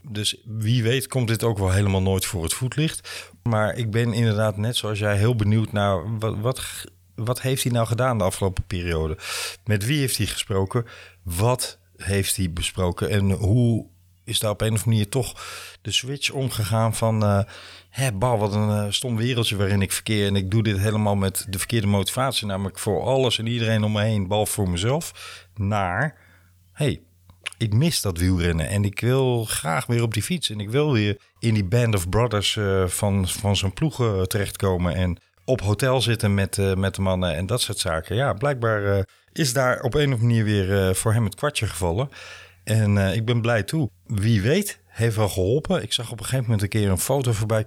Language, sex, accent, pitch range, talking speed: Dutch, male, Dutch, 100-120 Hz, 210 wpm